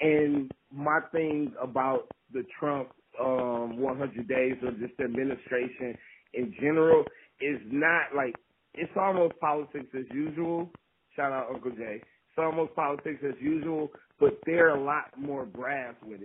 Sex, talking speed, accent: male, 140 wpm, American